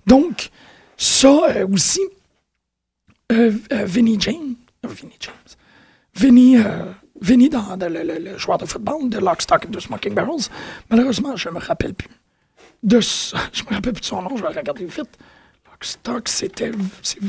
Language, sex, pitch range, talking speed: French, male, 205-260 Hz, 160 wpm